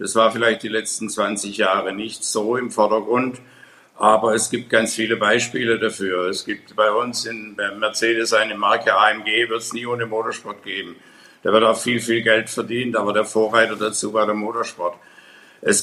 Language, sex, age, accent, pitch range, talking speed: German, male, 60-79, German, 110-120 Hz, 180 wpm